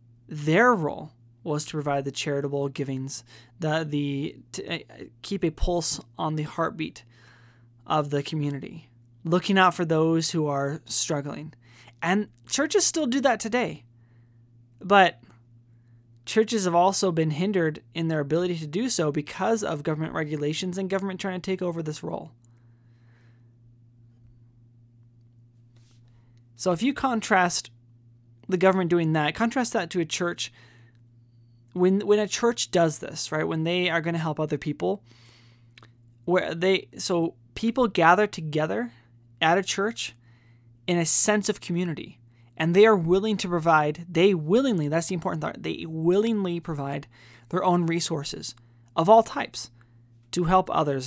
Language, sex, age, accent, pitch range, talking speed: English, male, 20-39, American, 120-180 Hz, 145 wpm